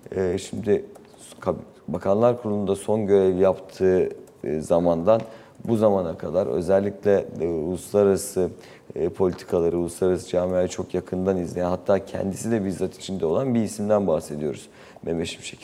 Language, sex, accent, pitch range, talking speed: Turkish, male, native, 90-105 Hz, 105 wpm